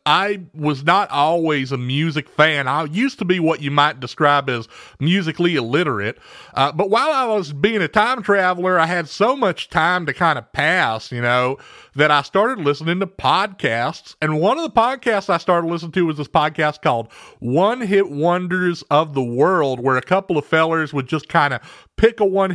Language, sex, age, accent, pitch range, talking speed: English, male, 40-59, American, 145-190 Hz, 200 wpm